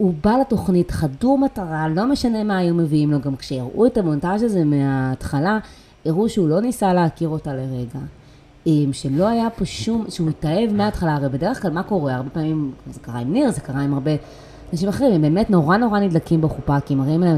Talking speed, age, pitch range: 200 wpm, 20-39, 140-190 Hz